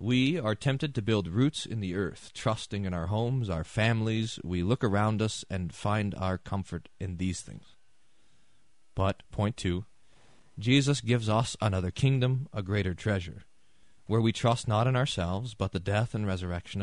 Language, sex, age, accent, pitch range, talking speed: English, male, 30-49, American, 95-115 Hz, 170 wpm